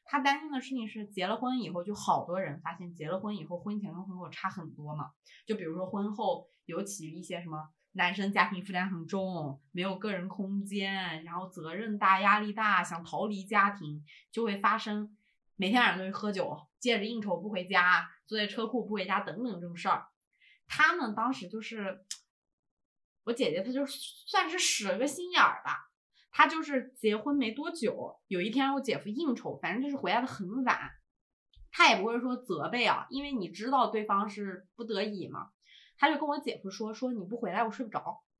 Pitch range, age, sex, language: 185-250 Hz, 20-39, female, Chinese